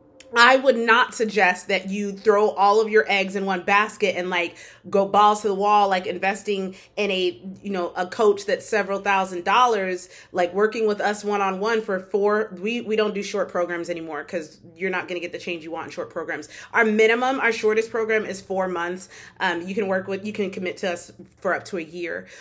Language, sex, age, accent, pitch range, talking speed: English, female, 30-49, American, 185-225 Hz, 220 wpm